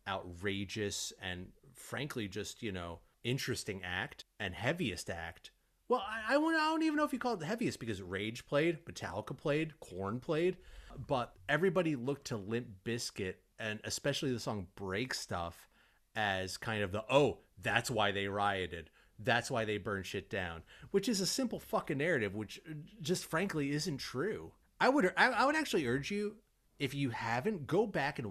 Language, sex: English, male